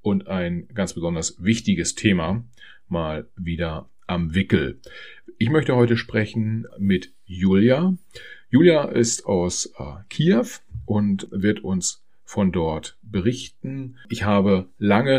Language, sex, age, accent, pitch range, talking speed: German, male, 40-59, German, 90-115 Hz, 115 wpm